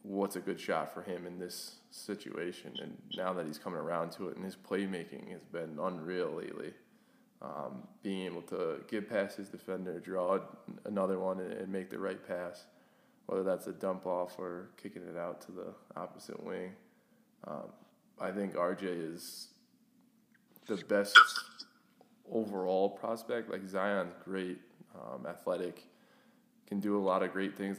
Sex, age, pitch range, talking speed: male, 20-39, 95-110 Hz, 160 wpm